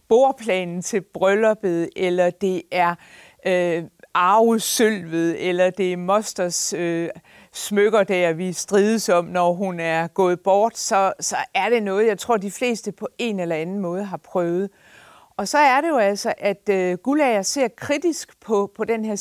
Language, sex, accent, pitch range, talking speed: Danish, female, native, 190-265 Hz, 170 wpm